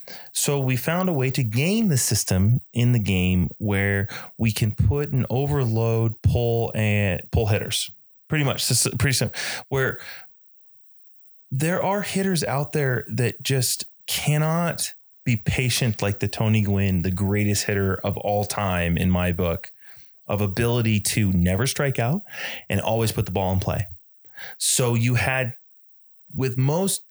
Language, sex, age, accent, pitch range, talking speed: English, male, 30-49, American, 105-140 Hz, 150 wpm